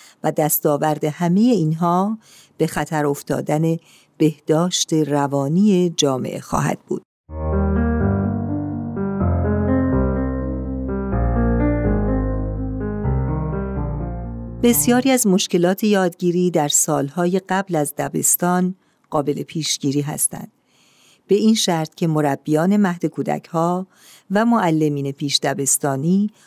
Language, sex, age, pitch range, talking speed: Persian, female, 50-69, 145-185 Hz, 80 wpm